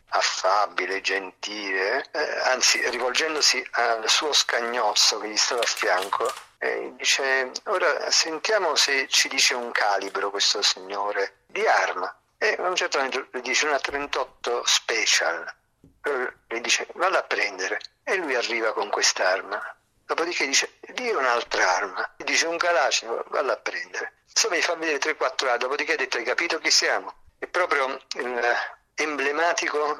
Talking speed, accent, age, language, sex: 150 wpm, native, 50-69, Italian, male